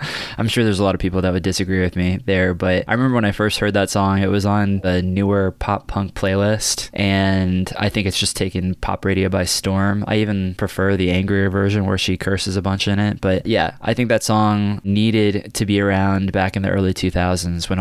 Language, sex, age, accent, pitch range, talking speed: English, male, 20-39, American, 95-110 Hz, 235 wpm